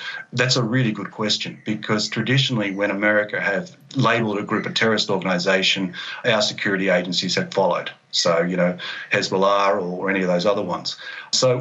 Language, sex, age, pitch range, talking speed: English, male, 40-59, 105-130 Hz, 165 wpm